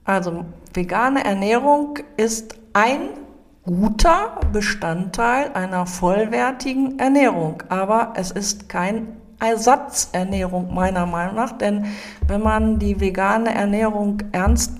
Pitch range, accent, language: 195-235 Hz, German, German